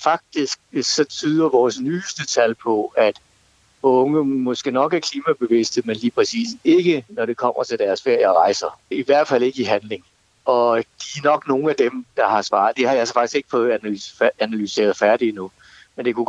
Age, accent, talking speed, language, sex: 60-79, native, 200 wpm, Danish, male